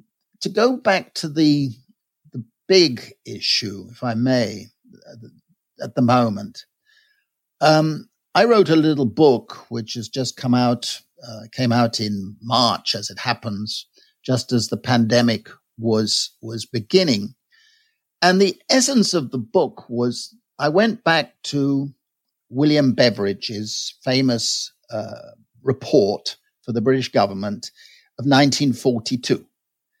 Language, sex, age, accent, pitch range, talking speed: English, male, 60-79, British, 120-185 Hz, 125 wpm